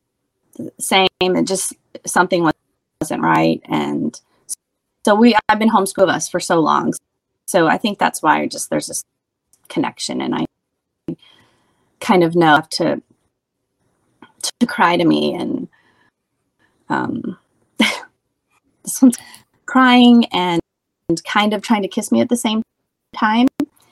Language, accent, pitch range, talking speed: English, American, 190-270 Hz, 130 wpm